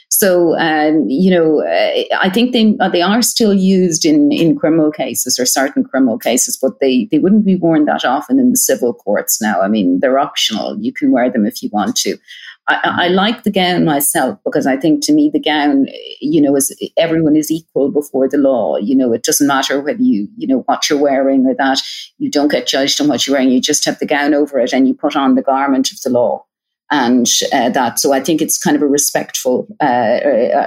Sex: female